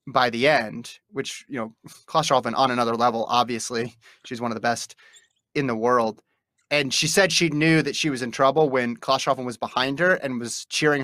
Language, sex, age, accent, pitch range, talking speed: English, male, 30-49, American, 120-160 Hz, 210 wpm